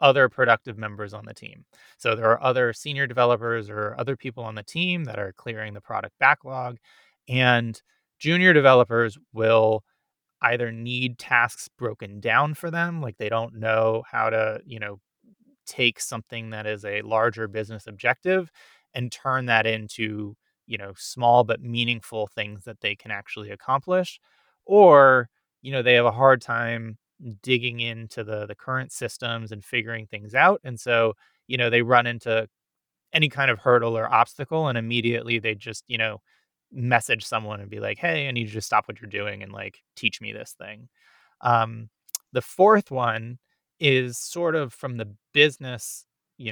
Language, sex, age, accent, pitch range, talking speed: English, male, 30-49, American, 110-130 Hz, 175 wpm